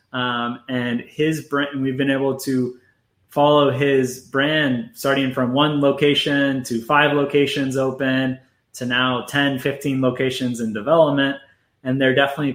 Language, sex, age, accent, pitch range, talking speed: English, male, 20-39, American, 125-150 Hz, 145 wpm